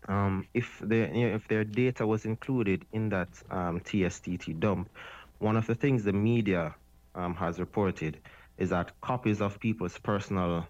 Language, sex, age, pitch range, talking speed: English, male, 30-49, 85-110 Hz, 155 wpm